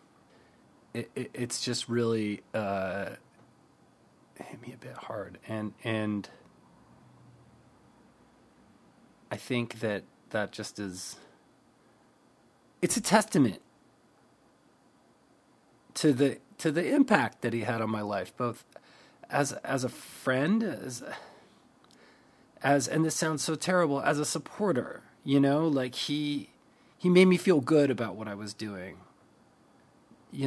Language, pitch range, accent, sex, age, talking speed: English, 110-145 Hz, American, male, 30-49, 120 wpm